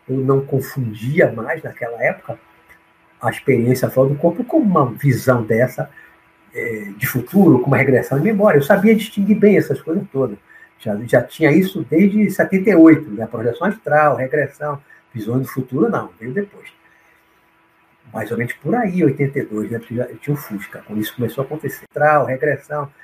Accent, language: Brazilian, Portuguese